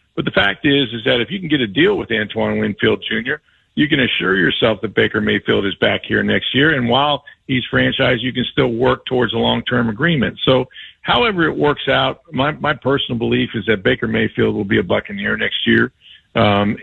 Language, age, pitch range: English, 50-69, 110-125 Hz